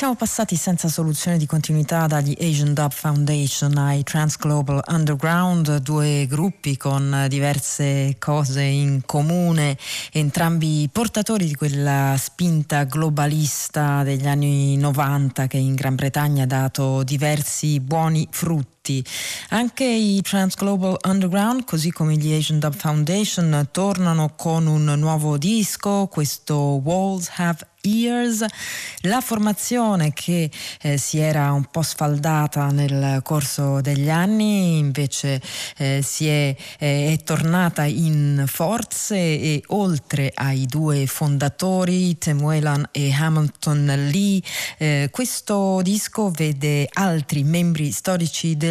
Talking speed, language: 120 wpm, Italian